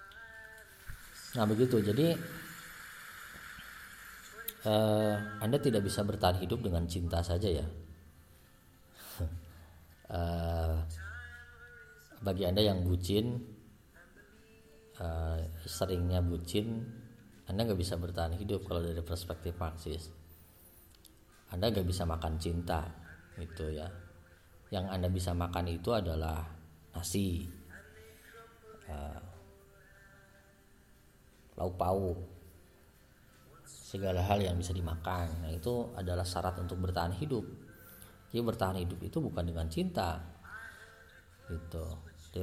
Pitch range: 85-100 Hz